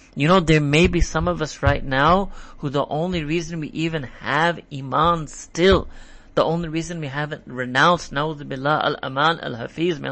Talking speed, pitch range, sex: 185 wpm, 135-170 Hz, male